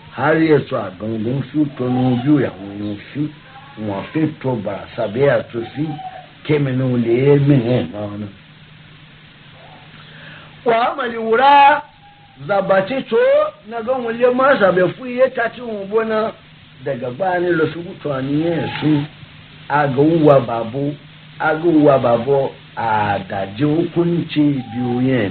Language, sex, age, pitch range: English, male, 50-69, 130-165 Hz